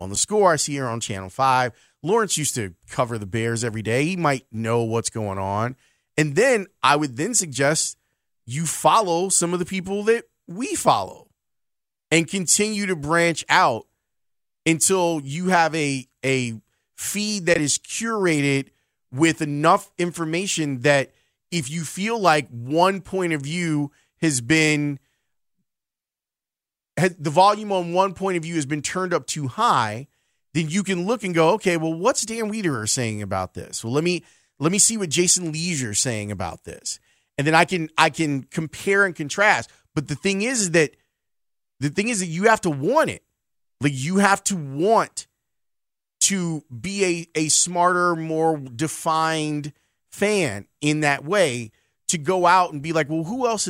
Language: English